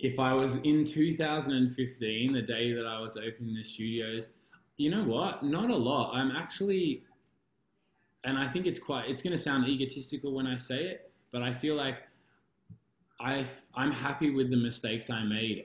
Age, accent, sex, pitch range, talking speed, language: 20-39, Australian, male, 100-120 Hz, 175 wpm, English